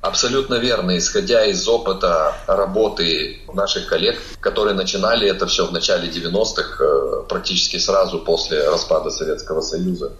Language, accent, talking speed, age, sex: Russian, native, 125 wpm, 30-49, male